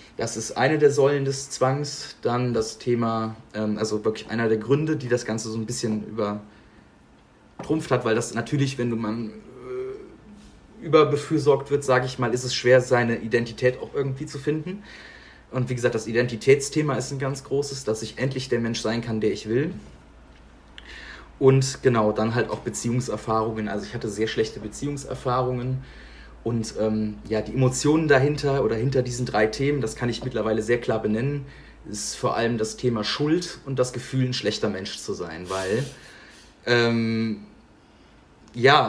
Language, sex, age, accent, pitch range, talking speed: German, male, 30-49, German, 110-135 Hz, 170 wpm